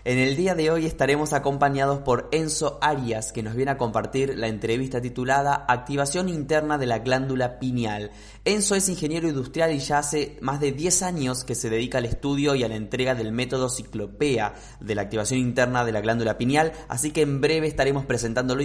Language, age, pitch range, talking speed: Spanish, 20-39, 115-140 Hz, 195 wpm